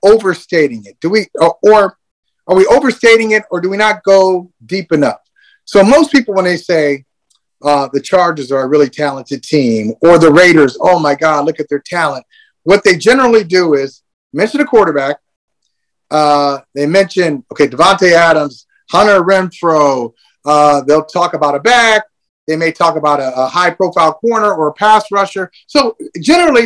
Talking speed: 175 wpm